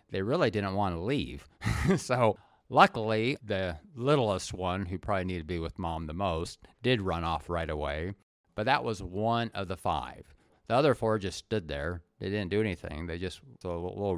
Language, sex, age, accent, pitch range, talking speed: English, male, 50-69, American, 90-115 Hz, 195 wpm